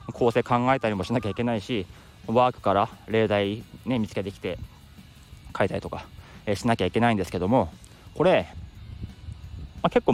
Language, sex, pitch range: Japanese, male, 100-125 Hz